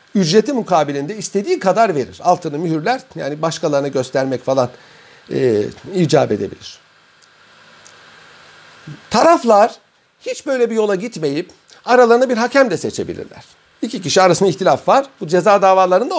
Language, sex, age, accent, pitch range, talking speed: Turkish, male, 60-79, native, 170-255 Hz, 120 wpm